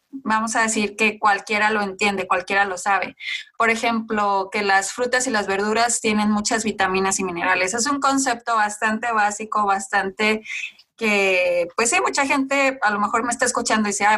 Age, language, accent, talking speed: 20-39, Spanish, Mexican, 180 wpm